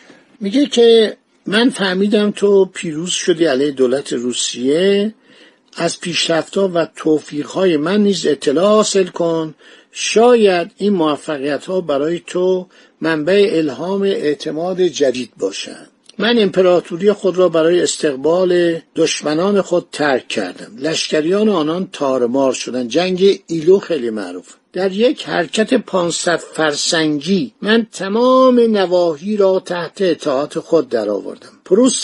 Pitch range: 160-210 Hz